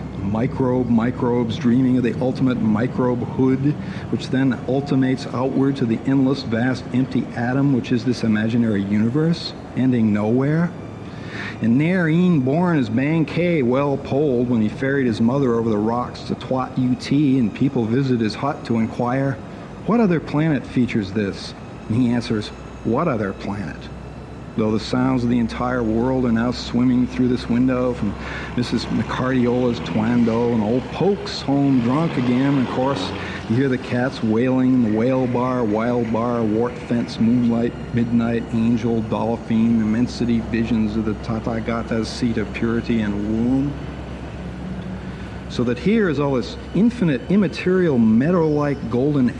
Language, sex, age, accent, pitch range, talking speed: English, male, 50-69, American, 115-135 Hz, 155 wpm